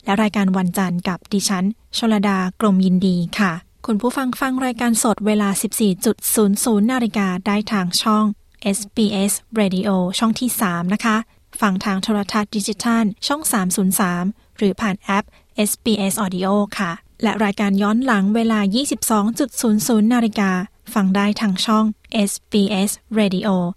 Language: Thai